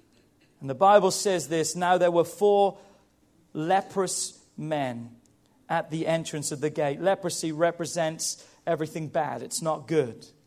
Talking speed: 140 wpm